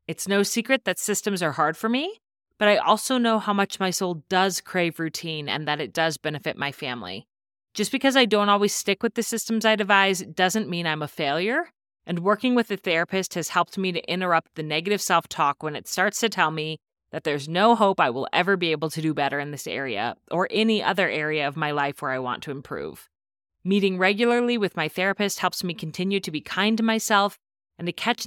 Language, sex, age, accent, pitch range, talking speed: English, female, 30-49, American, 155-210 Hz, 225 wpm